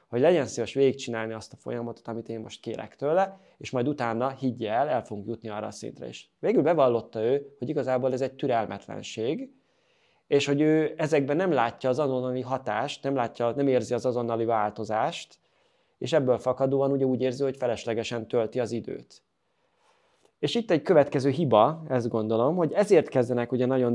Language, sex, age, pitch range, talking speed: Hungarian, male, 20-39, 115-140 Hz, 175 wpm